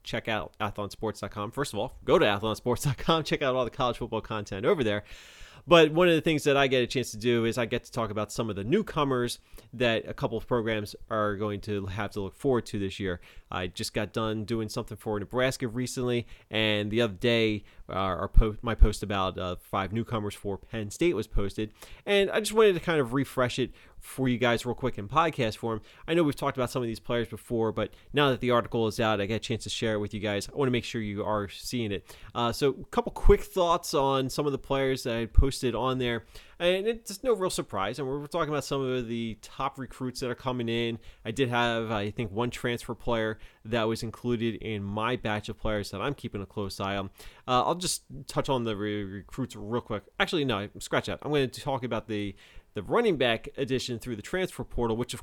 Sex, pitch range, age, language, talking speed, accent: male, 105-130 Hz, 30-49, English, 240 wpm, American